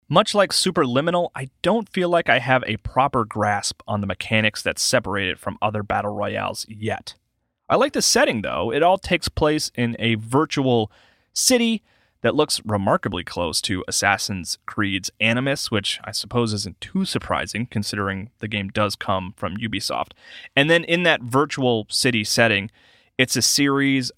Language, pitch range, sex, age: English, 105-135 Hz, male, 30-49